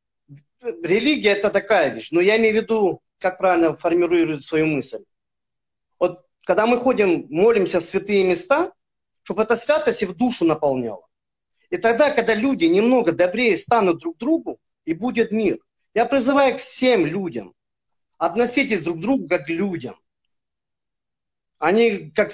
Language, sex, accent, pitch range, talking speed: Russian, male, native, 165-230 Hz, 150 wpm